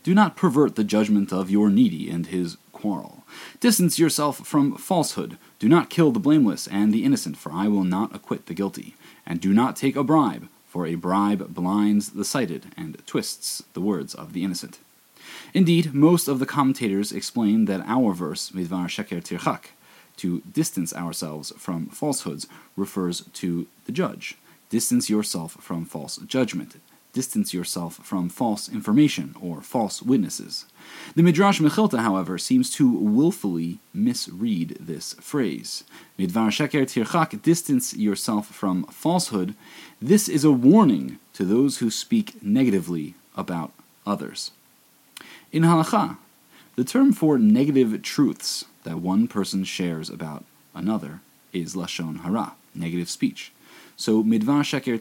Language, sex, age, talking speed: English, male, 30-49, 145 wpm